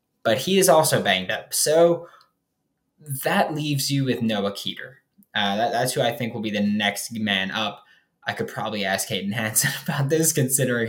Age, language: 10-29, English